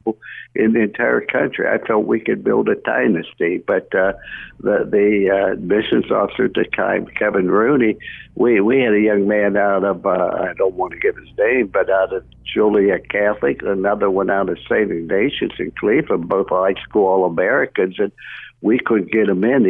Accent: American